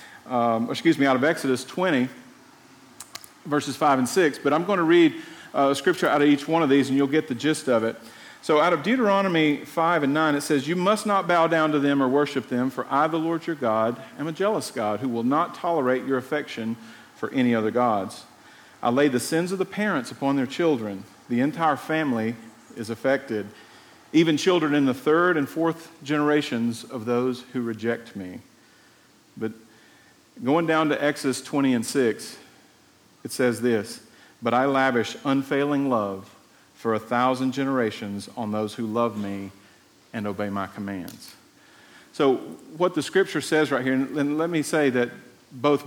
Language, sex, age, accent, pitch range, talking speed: English, male, 40-59, American, 120-160 Hz, 185 wpm